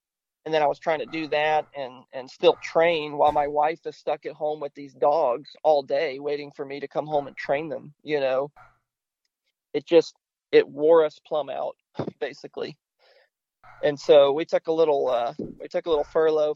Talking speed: 200 wpm